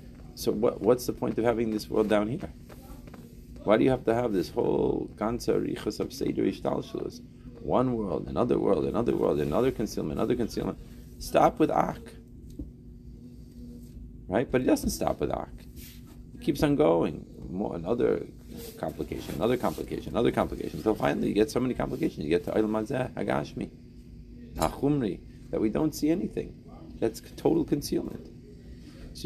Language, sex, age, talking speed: English, male, 40-59, 150 wpm